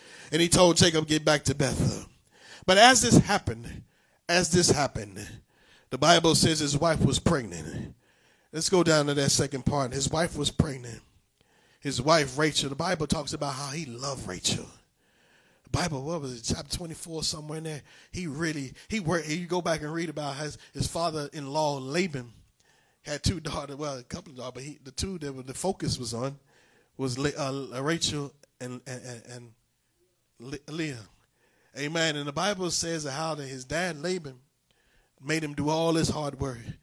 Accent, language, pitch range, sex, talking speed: American, English, 135-175 Hz, male, 180 wpm